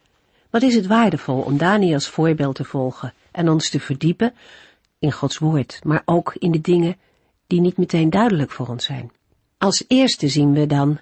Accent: Dutch